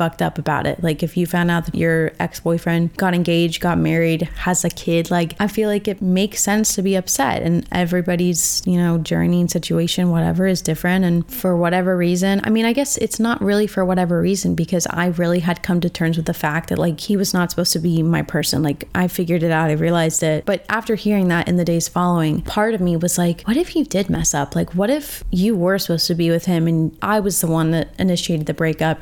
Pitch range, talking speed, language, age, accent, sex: 165-190 Hz, 245 wpm, English, 20-39, American, female